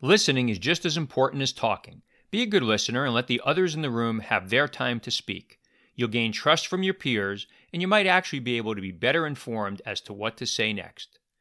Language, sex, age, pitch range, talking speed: English, male, 40-59, 110-150 Hz, 235 wpm